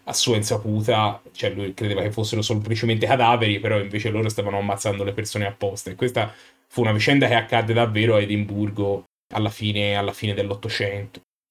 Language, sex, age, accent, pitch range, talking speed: Italian, male, 20-39, native, 105-125 Hz, 165 wpm